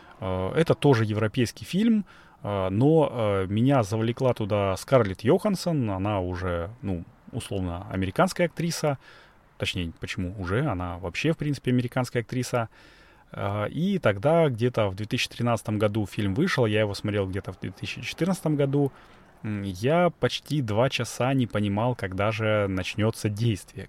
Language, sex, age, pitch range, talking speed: Russian, male, 20-39, 100-135 Hz, 125 wpm